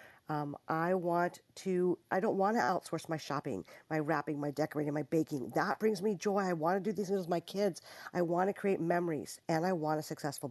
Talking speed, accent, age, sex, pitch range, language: 230 wpm, American, 50-69, female, 155-200 Hz, English